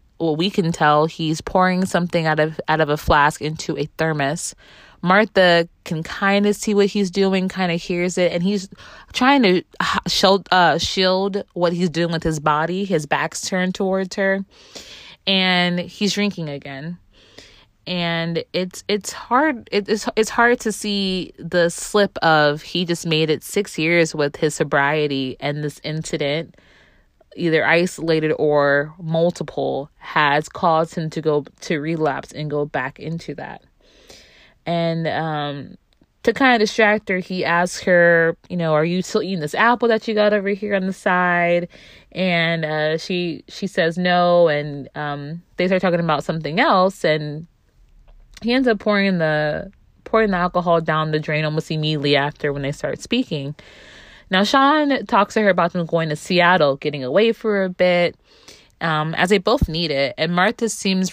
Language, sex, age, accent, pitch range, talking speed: English, female, 20-39, American, 155-195 Hz, 170 wpm